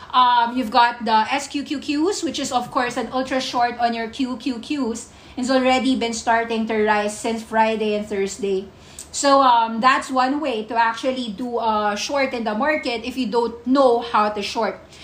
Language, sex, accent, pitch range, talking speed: English, female, Filipino, 230-270 Hz, 180 wpm